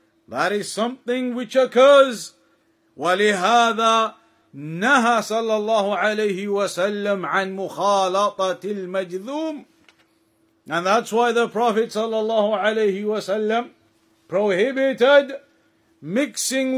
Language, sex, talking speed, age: English, male, 80 wpm, 50-69